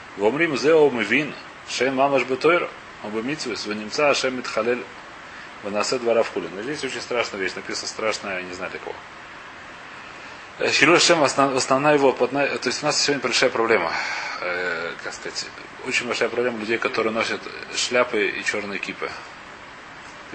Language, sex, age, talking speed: Russian, male, 30-49, 115 wpm